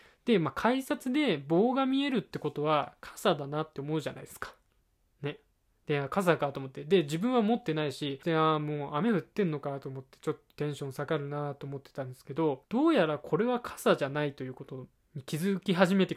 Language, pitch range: Japanese, 140-195 Hz